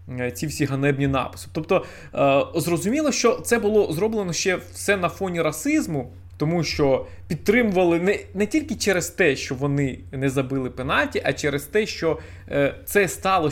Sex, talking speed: male, 150 wpm